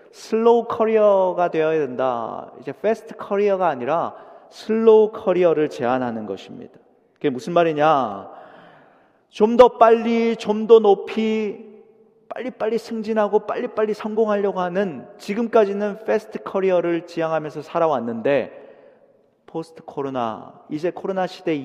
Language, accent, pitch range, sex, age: Korean, native, 145-215 Hz, male, 40-59